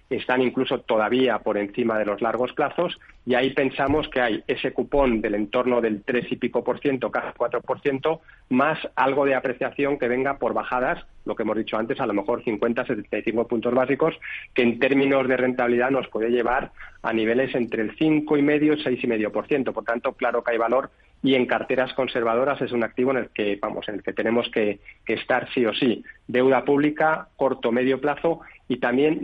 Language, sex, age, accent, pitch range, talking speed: Spanish, male, 40-59, Spanish, 115-135 Hz, 205 wpm